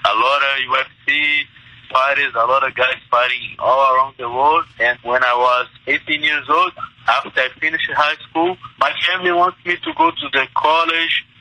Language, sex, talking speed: English, male, 185 wpm